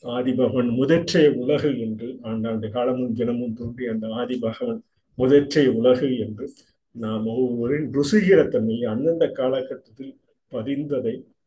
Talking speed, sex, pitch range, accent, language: 95 wpm, male, 115-140 Hz, native, Tamil